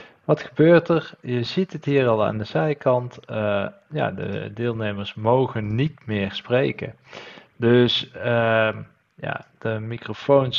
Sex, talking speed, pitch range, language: male, 135 wpm, 110-140 Hz, Dutch